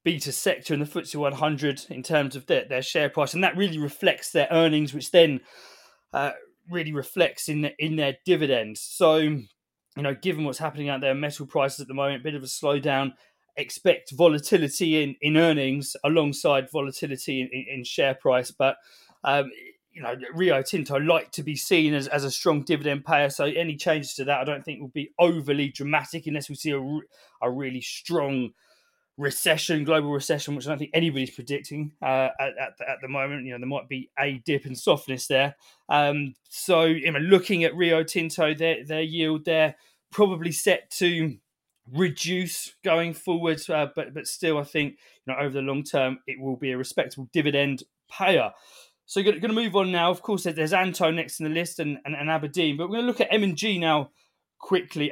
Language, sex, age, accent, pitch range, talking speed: English, male, 20-39, British, 140-170 Hz, 200 wpm